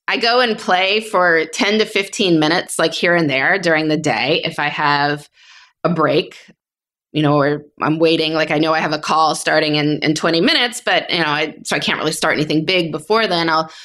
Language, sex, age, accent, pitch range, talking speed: English, female, 20-39, American, 150-180 Hz, 220 wpm